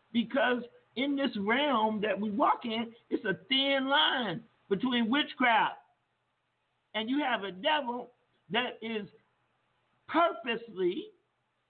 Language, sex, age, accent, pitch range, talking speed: English, male, 50-69, American, 215-275 Hz, 115 wpm